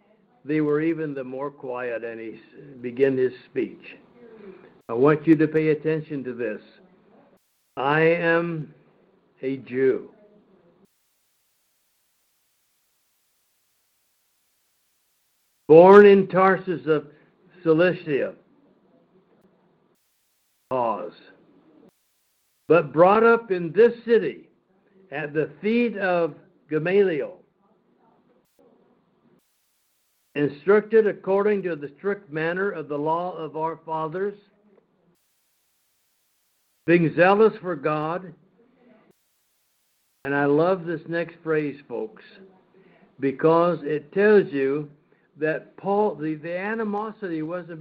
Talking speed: 90 wpm